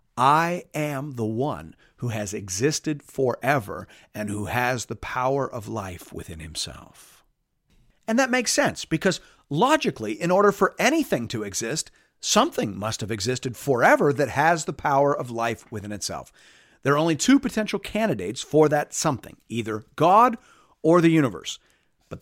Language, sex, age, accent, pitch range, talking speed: English, male, 50-69, American, 115-180 Hz, 155 wpm